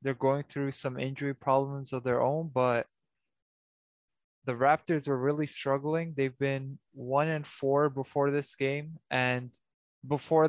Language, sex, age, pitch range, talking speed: English, male, 20-39, 130-155 Hz, 145 wpm